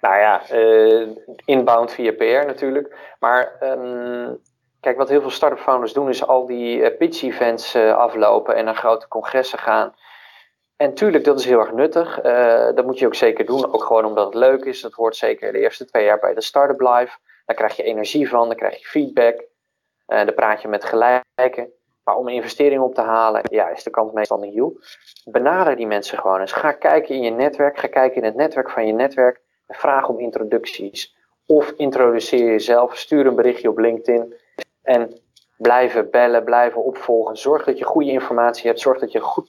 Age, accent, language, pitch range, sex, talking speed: 20-39, Dutch, Dutch, 115-145 Hz, male, 200 wpm